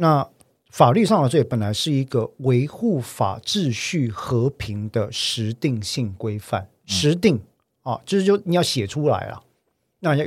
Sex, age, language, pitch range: male, 50-69, Chinese, 105-140 Hz